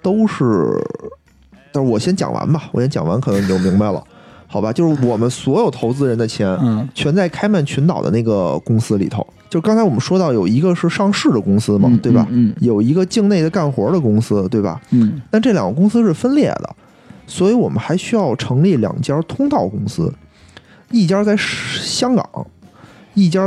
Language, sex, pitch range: Chinese, male, 115-185 Hz